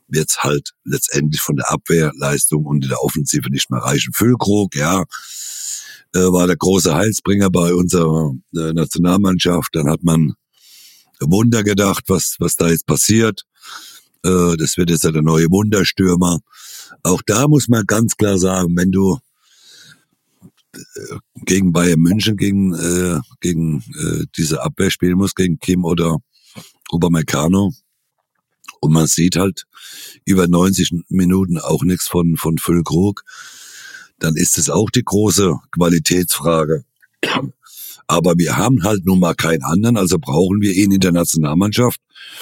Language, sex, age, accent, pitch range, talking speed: German, male, 60-79, German, 80-95 Hz, 130 wpm